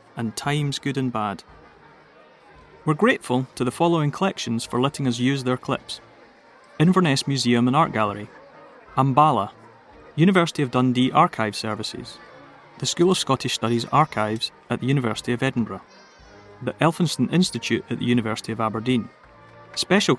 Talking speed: 145 wpm